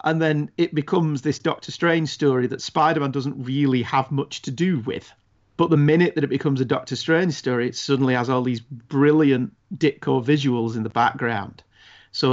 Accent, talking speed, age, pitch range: British, 190 wpm, 40-59, 125-150 Hz